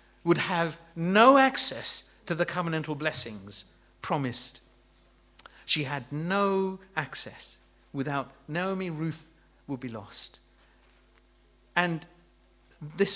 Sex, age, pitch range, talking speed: male, 50-69, 120-165 Hz, 95 wpm